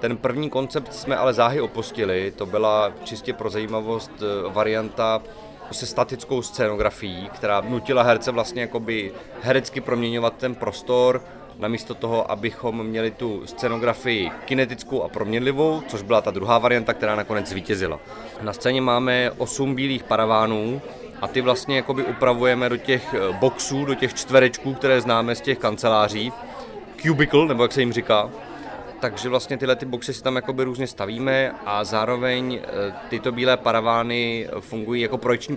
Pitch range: 110-130 Hz